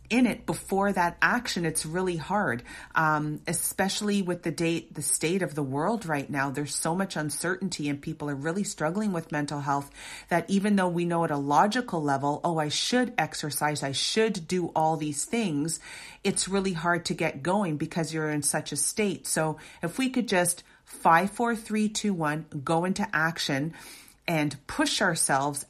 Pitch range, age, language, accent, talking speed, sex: 150-185 Hz, 40-59, English, American, 185 wpm, female